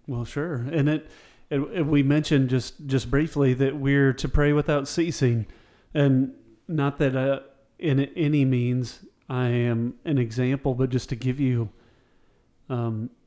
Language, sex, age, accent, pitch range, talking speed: English, male, 40-59, American, 125-145 Hz, 155 wpm